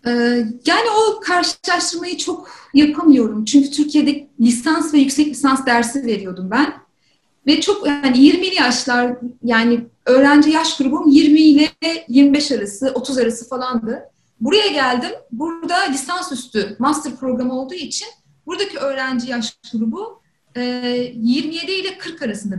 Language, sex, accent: Turkish, female, native